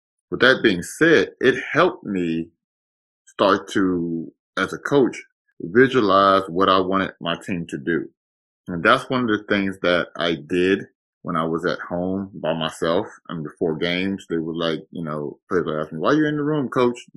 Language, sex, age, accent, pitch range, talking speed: English, male, 30-49, American, 80-100 Hz, 190 wpm